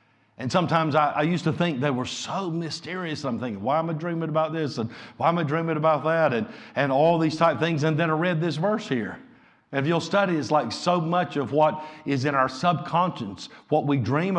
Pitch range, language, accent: 120-160 Hz, English, American